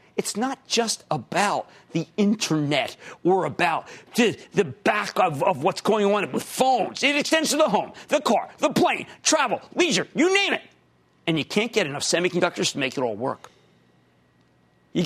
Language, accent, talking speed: English, American, 170 wpm